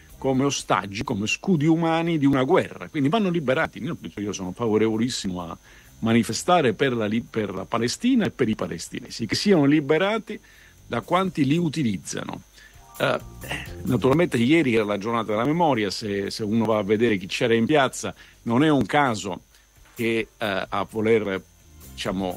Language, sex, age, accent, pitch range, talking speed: Italian, male, 50-69, native, 105-150 Hz, 160 wpm